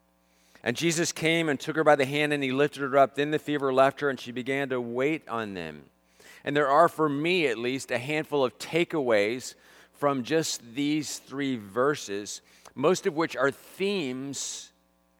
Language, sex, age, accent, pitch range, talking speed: English, male, 40-59, American, 100-140 Hz, 185 wpm